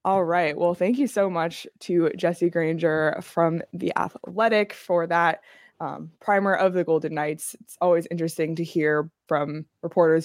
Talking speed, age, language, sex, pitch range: 165 wpm, 20-39, English, female, 165-205 Hz